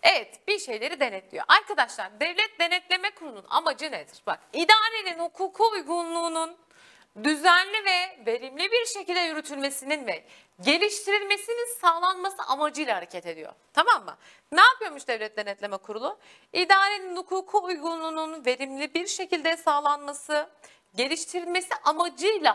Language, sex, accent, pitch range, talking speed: Turkish, female, native, 275-380 Hz, 110 wpm